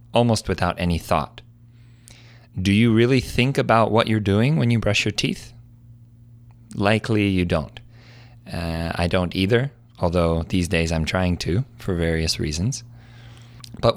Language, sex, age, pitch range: Korean, male, 30-49, 90-120 Hz